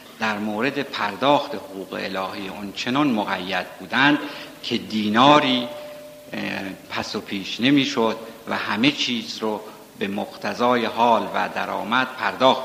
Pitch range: 105-140 Hz